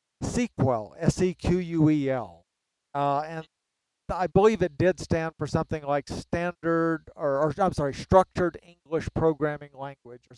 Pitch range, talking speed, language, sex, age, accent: 140-175 Hz, 120 wpm, English, male, 50-69, American